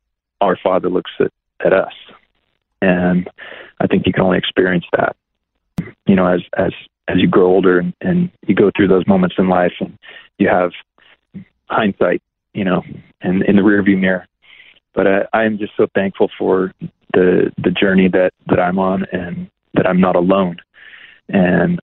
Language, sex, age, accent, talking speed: English, male, 30-49, American, 175 wpm